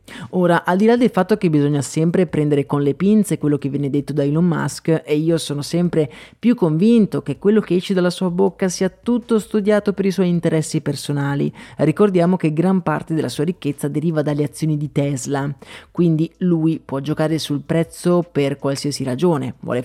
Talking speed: 190 wpm